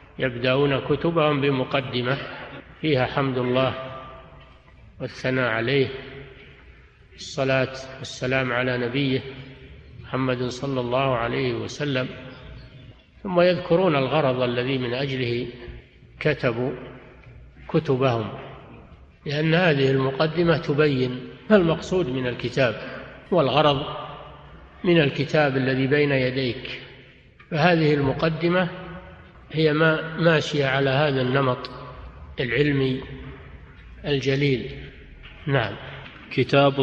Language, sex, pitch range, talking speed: Arabic, male, 130-150 Hz, 80 wpm